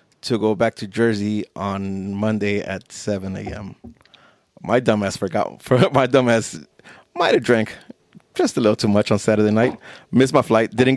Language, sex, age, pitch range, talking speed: English, male, 30-49, 105-130 Hz, 165 wpm